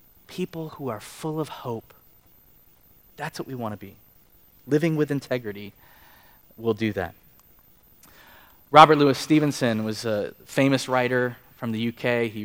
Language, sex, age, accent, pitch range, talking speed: English, male, 20-39, American, 110-135 Hz, 140 wpm